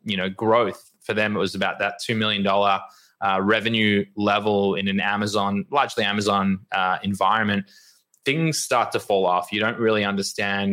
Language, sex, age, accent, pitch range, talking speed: English, male, 20-39, Australian, 100-115 Hz, 170 wpm